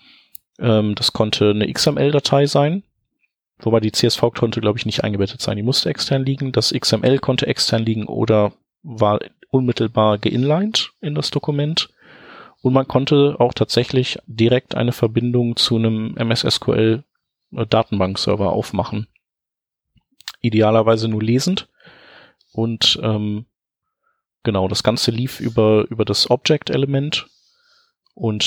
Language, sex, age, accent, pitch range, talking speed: German, male, 30-49, German, 105-125 Hz, 120 wpm